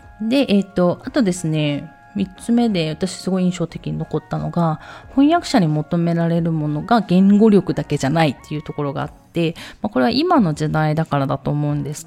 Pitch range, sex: 155-195 Hz, female